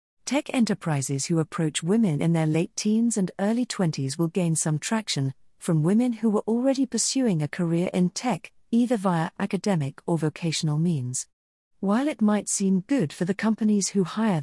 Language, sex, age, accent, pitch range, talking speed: English, female, 40-59, British, 155-210 Hz, 175 wpm